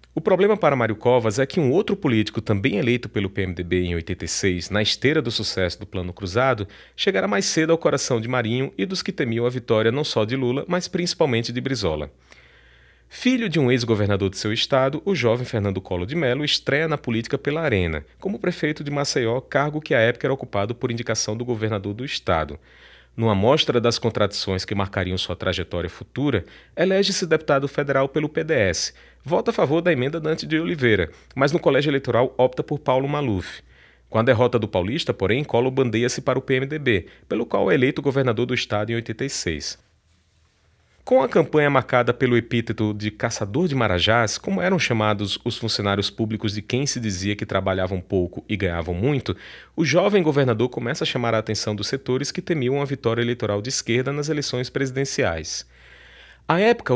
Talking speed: 185 wpm